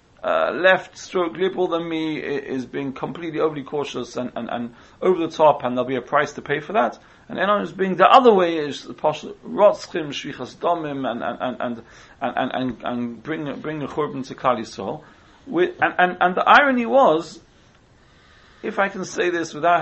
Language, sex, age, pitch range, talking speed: English, male, 40-59, 140-185 Hz, 180 wpm